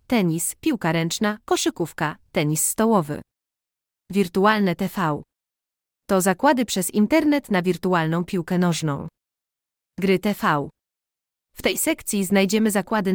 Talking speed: 105 wpm